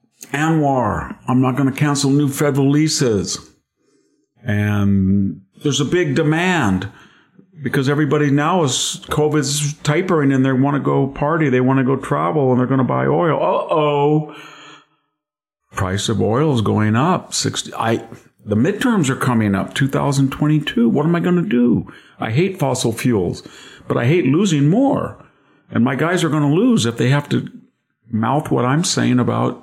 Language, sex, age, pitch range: English, male, 50-69, 110-150 Hz